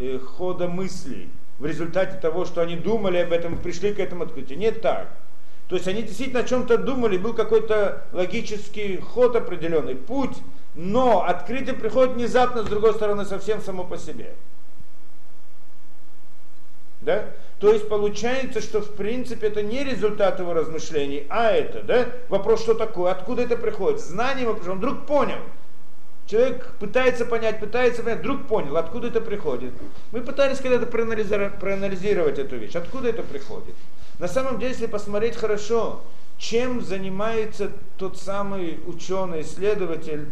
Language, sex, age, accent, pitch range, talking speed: Russian, male, 40-59, native, 185-240 Hz, 140 wpm